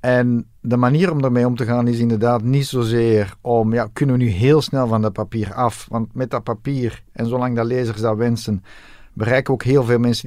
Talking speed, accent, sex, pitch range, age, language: 230 wpm, Dutch, male, 105-120 Hz, 50-69, Dutch